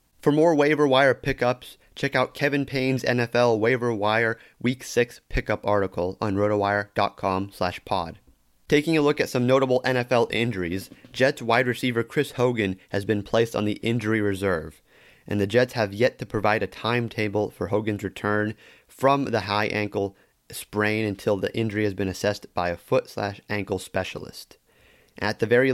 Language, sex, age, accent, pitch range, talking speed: English, male, 30-49, American, 105-130 Hz, 165 wpm